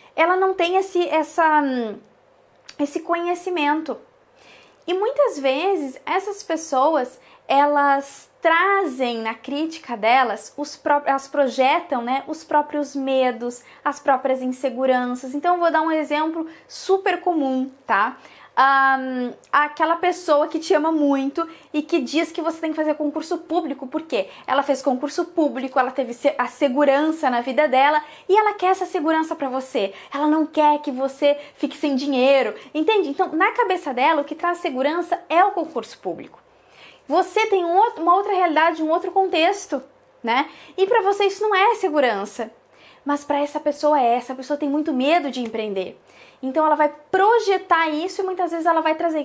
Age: 20-39